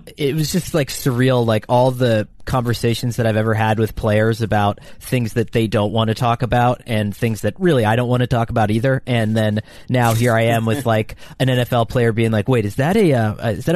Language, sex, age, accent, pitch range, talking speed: English, male, 30-49, American, 110-135 Hz, 240 wpm